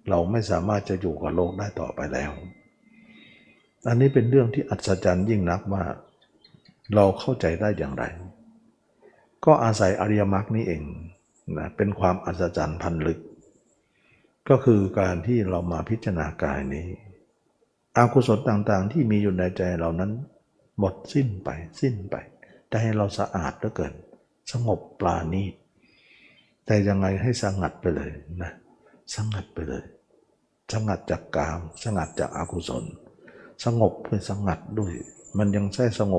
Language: Thai